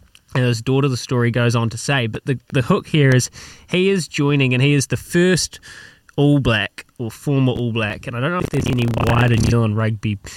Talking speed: 230 wpm